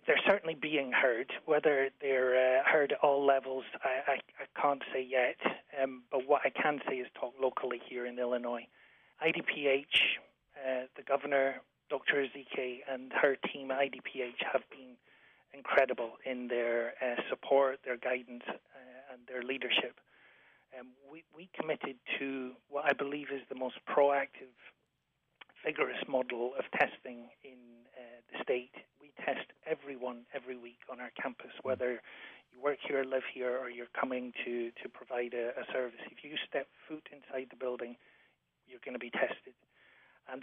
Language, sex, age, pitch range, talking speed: English, male, 30-49, 125-140 Hz, 160 wpm